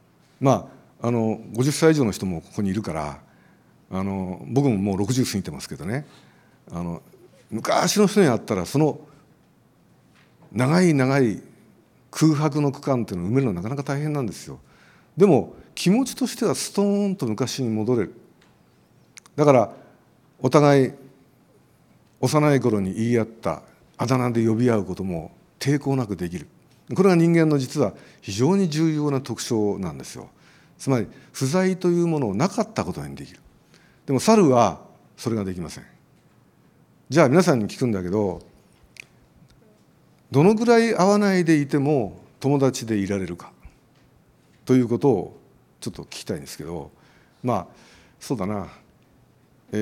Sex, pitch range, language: male, 105-155 Hz, Japanese